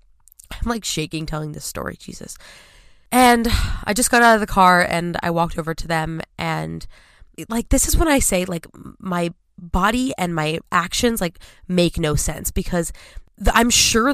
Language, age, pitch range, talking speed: English, 20-39, 165-215 Hz, 175 wpm